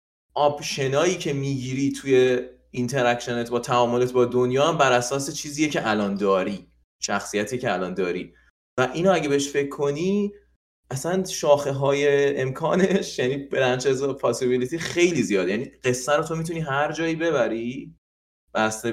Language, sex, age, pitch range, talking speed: Persian, male, 30-49, 105-145 Hz, 135 wpm